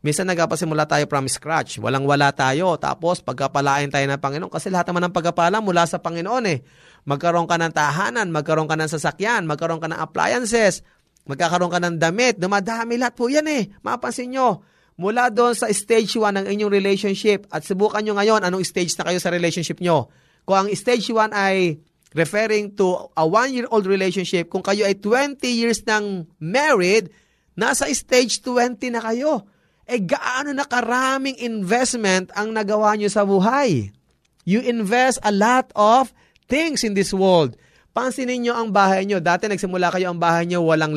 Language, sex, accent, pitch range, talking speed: Filipino, male, native, 165-225 Hz, 175 wpm